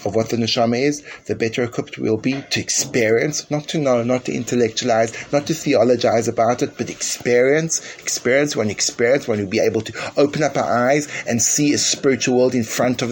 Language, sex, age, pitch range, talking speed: English, male, 30-49, 125-145 Hz, 210 wpm